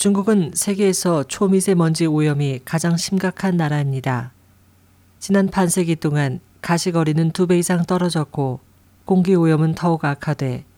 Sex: female